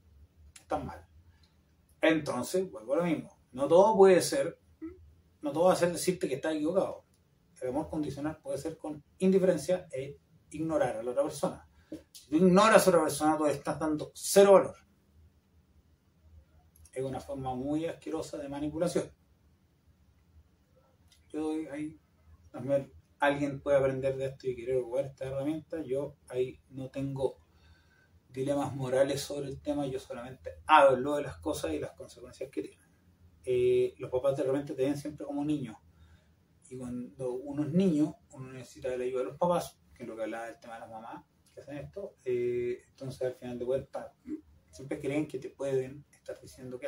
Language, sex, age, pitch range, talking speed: Spanish, male, 30-49, 95-160 Hz, 170 wpm